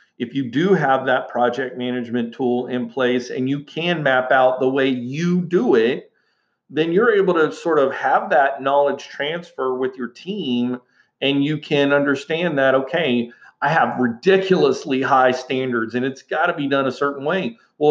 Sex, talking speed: male, 180 wpm